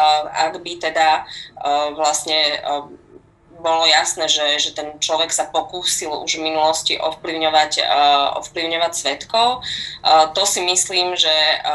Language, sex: Slovak, female